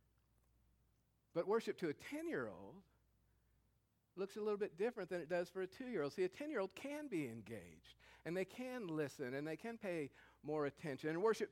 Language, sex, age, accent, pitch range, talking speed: English, male, 50-69, American, 145-195 Hz, 175 wpm